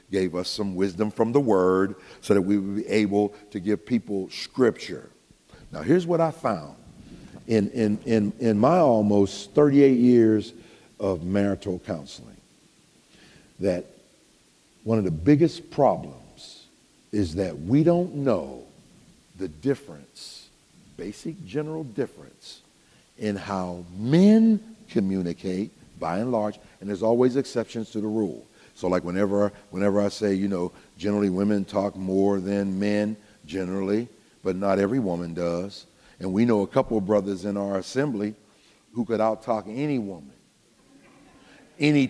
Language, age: English, 50-69